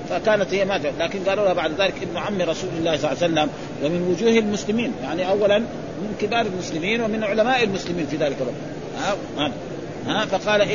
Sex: male